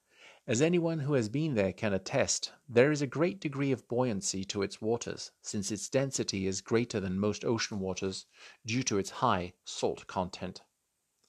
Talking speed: 175 wpm